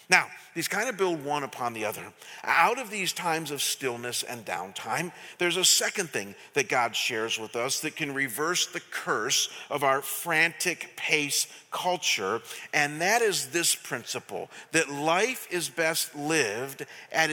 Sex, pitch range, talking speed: male, 155-215 Hz, 165 wpm